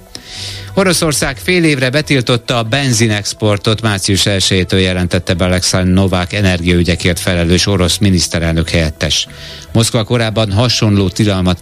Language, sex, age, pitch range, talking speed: Hungarian, male, 50-69, 90-110 Hz, 100 wpm